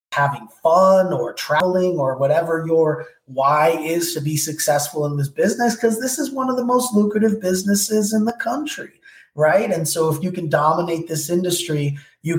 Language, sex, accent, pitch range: English, male, American, 135-170 Hz